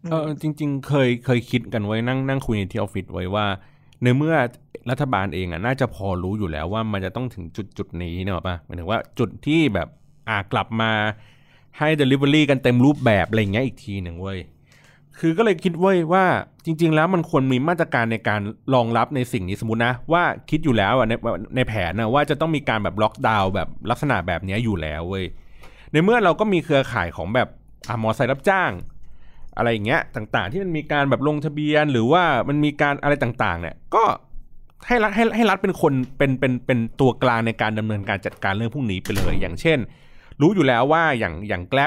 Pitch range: 105-145 Hz